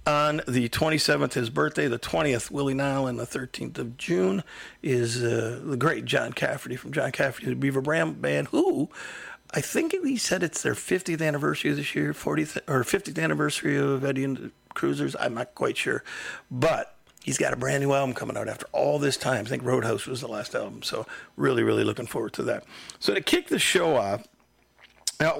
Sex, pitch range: male, 120-150 Hz